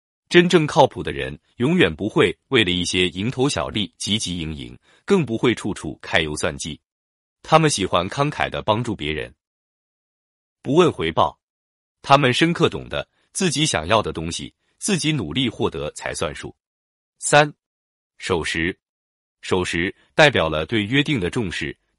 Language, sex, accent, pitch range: Chinese, male, native, 80-140 Hz